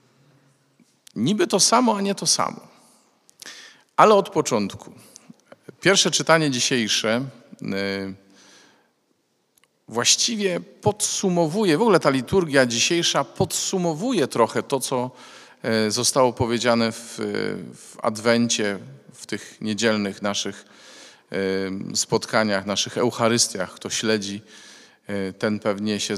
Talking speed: 95 wpm